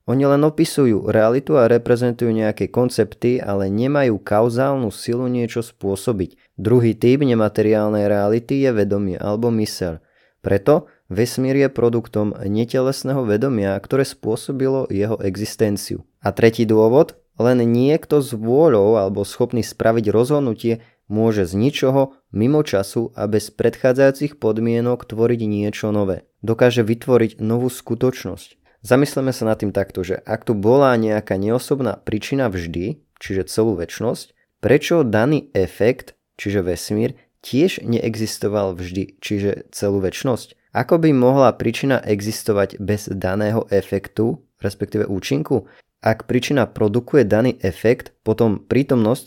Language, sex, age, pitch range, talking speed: Slovak, male, 20-39, 105-125 Hz, 125 wpm